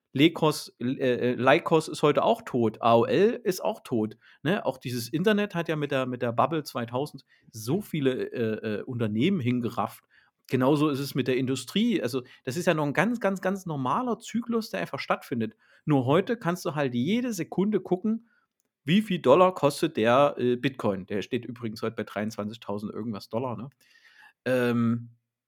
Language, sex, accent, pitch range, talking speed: German, male, German, 125-180 Hz, 160 wpm